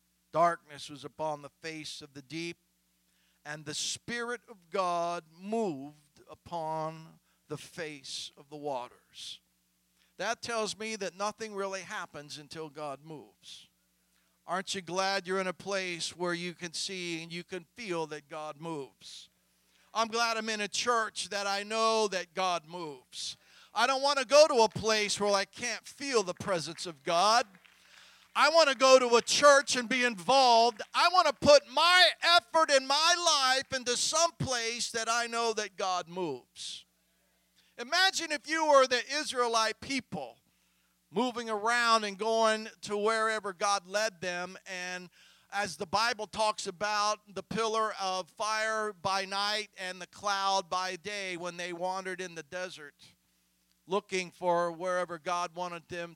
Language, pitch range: English, 170-225 Hz